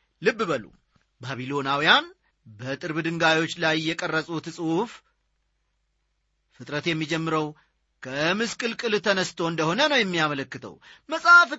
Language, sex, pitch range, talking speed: Amharic, male, 160-235 Hz, 80 wpm